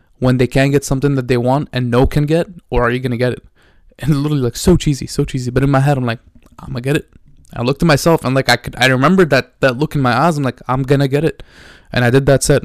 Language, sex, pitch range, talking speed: English, male, 120-135 Hz, 310 wpm